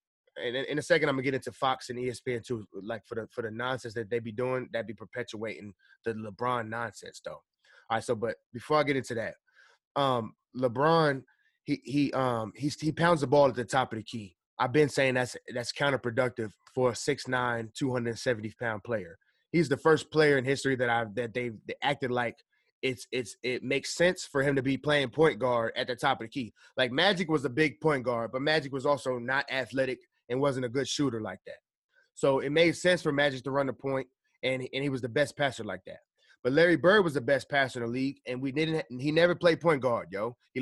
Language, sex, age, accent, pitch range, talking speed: English, male, 20-39, American, 120-145 Hz, 235 wpm